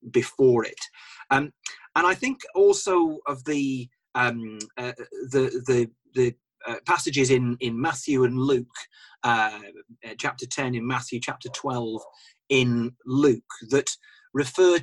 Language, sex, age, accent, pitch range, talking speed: English, male, 30-49, British, 120-150 Hz, 130 wpm